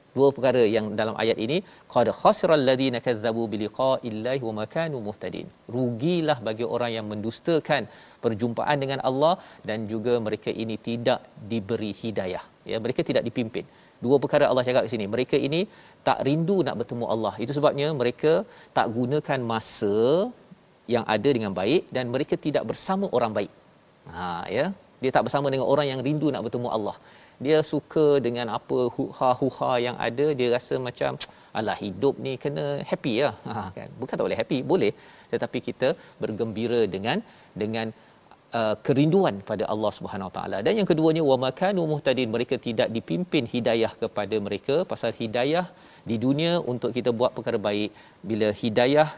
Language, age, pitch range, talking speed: Malayalam, 40-59, 115-145 Hz, 160 wpm